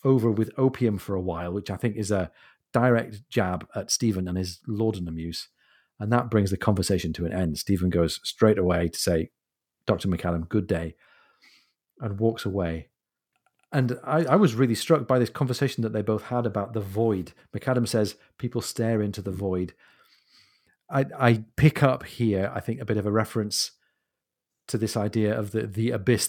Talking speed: 185 wpm